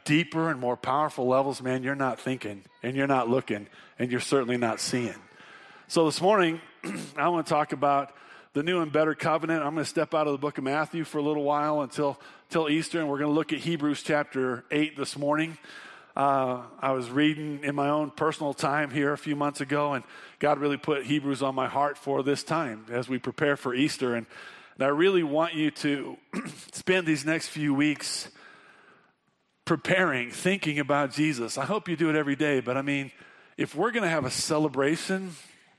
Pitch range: 130-155 Hz